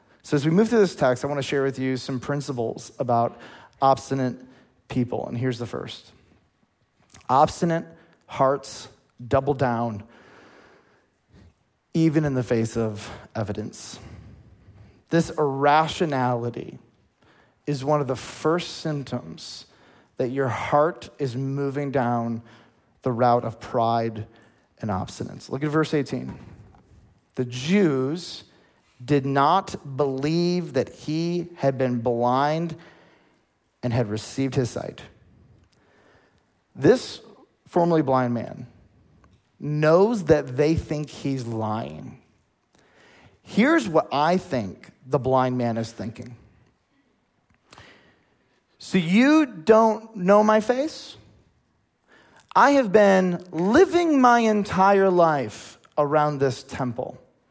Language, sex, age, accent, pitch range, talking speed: English, male, 30-49, American, 120-165 Hz, 110 wpm